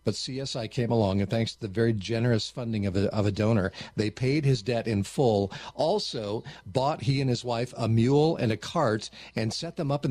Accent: American